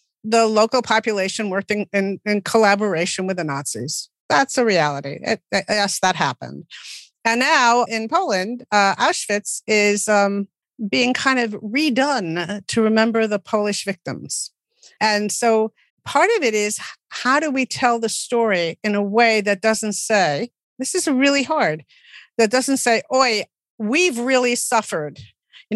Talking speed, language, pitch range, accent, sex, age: 145 wpm, English, 195-245 Hz, American, female, 50-69